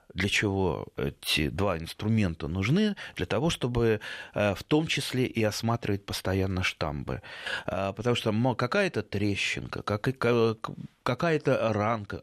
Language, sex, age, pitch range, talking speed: Russian, male, 30-49, 105-135 Hz, 110 wpm